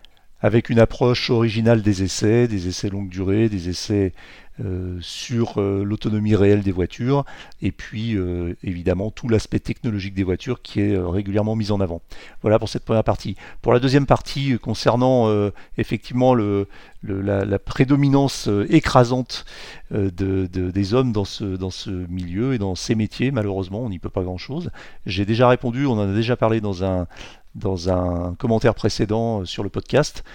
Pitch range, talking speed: 95-115 Hz, 175 wpm